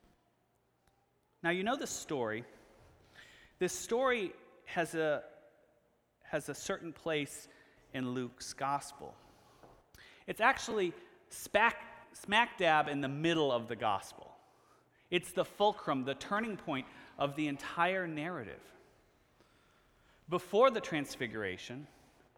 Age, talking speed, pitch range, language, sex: 30-49, 105 wpm, 115-175 Hz, English, male